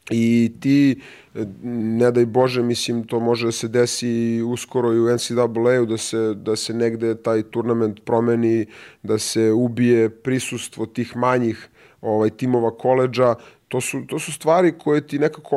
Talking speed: 150 wpm